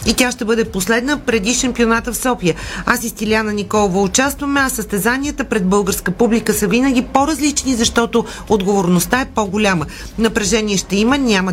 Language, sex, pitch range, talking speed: Bulgarian, female, 200-245 Hz, 155 wpm